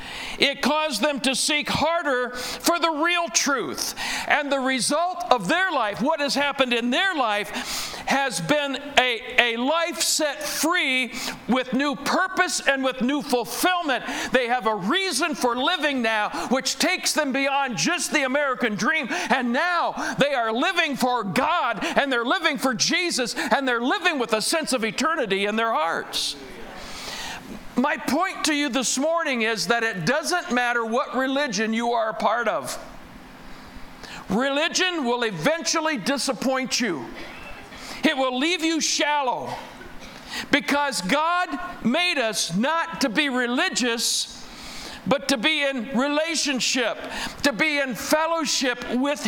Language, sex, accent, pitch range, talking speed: English, male, American, 245-315 Hz, 145 wpm